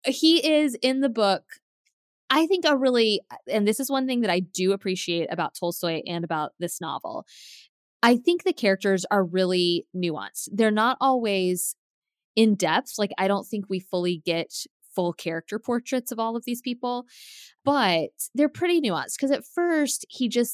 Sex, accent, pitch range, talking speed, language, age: female, American, 170-240 Hz, 175 wpm, English, 20-39